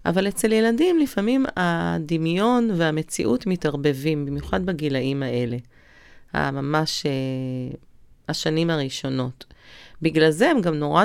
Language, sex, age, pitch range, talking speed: Hebrew, female, 40-59, 155-230 Hz, 105 wpm